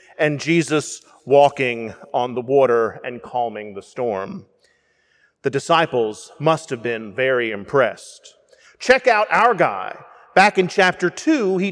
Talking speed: 135 wpm